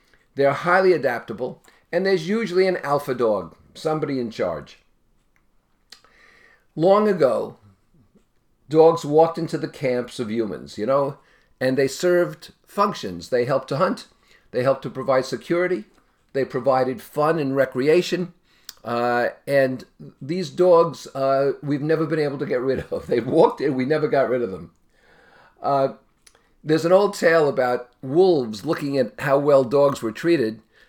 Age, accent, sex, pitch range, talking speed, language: 50-69, American, male, 125-165 Hz, 150 wpm, English